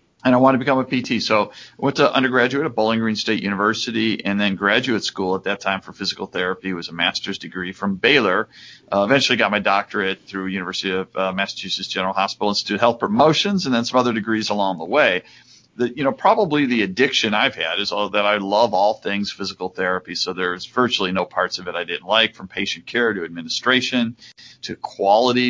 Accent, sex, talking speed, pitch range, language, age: American, male, 215 wpm, 95-120 Hz, English, 40-59